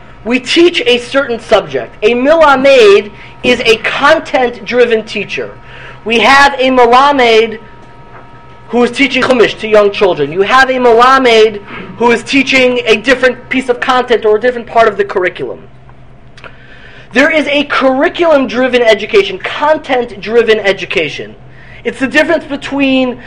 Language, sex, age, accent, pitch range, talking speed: English, male, 30-49, American, 205-255 Hz, 135 wpm